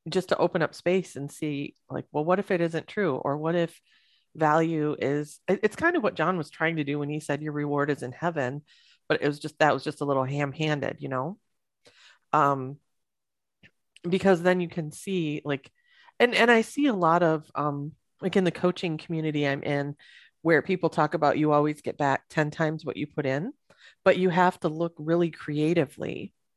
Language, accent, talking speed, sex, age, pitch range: English, American, 205 wpm, female, 30-49, 145-180 Hz